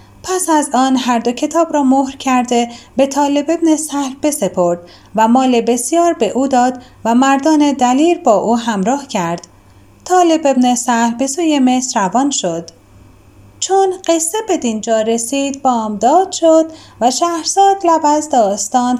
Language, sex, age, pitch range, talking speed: Persian, female, 30-49, 220-295 Hz, 145 wpm